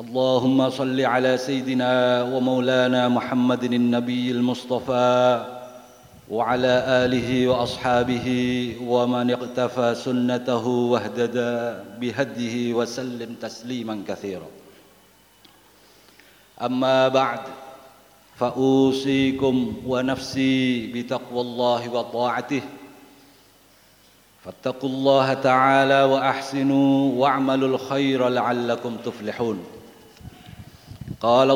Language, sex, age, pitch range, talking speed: Indonesian, male, 50-69, 120-130 Hz, 65 wpm